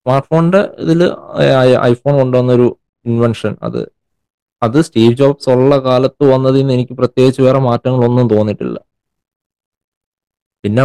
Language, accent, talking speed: Malayalam, native, 105 wpm